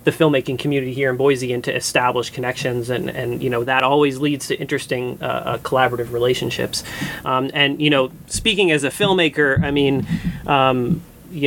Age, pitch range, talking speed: 30-49, 125-150 Hz, 180 wpm